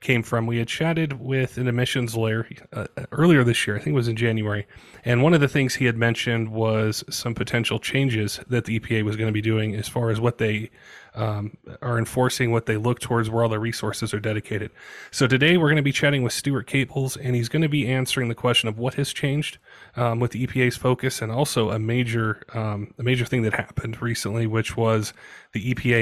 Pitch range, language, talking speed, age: 110-125 Hz, English, 230 wpm, 30-49